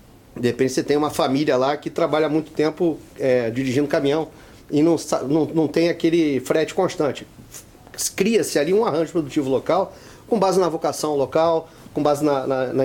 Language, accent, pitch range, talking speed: Portuguese, Brazilian, 140-195 Hz, 180 wpm